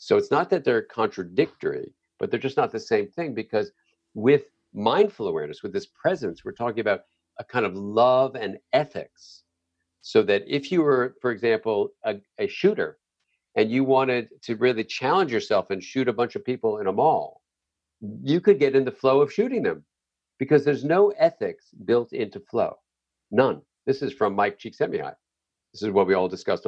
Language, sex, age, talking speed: English, male, 50-69, 185 wpm